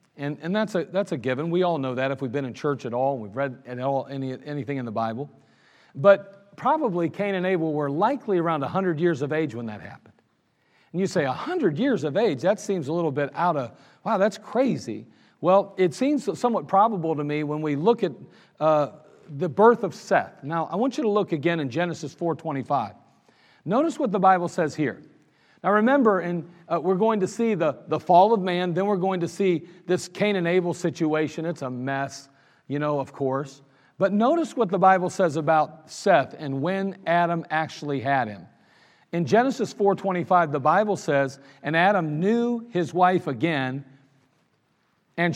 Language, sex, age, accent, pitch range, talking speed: English, male, 40-59, American, 145-195 Hz, 195 wpm